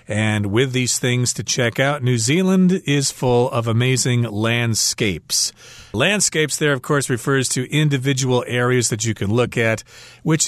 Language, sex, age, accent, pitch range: Chinese, male, 40-59, American, 115-145 Hz